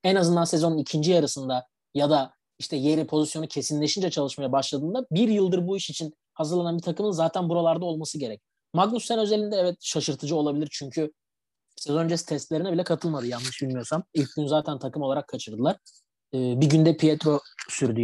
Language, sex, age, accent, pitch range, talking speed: Turkish, male, 30-49, native, 135-170 Hz, 165 wpm